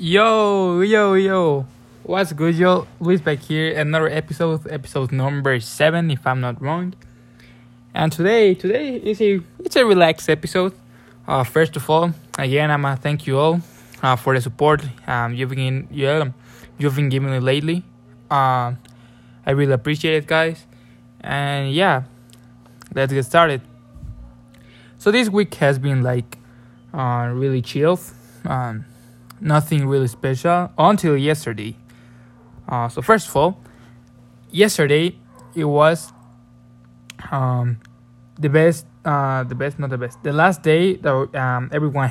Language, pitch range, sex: English, 120-160 Hz, male